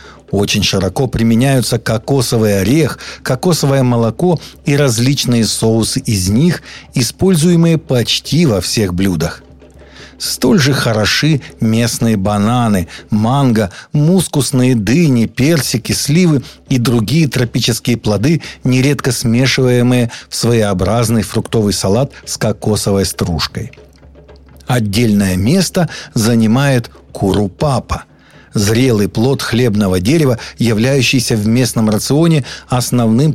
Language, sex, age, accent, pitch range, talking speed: Russian, male, 50-69, native, 110-140 Hz, 95 wpm